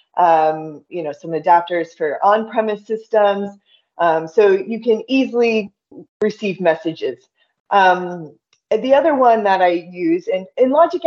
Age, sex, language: 20-39, female, English